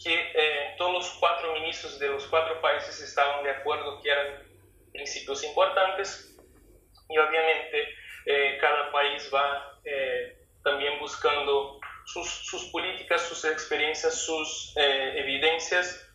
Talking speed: 125 wpm